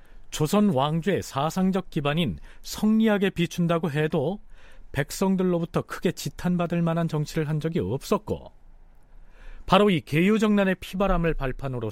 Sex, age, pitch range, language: male, 40-59, 115-170 Hz, Korean